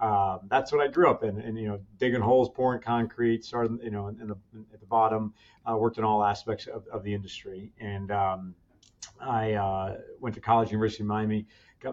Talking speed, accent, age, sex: 230 wpm, American, 40-59, male